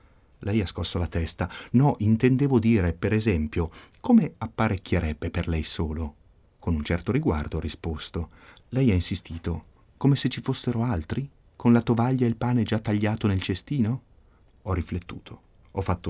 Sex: male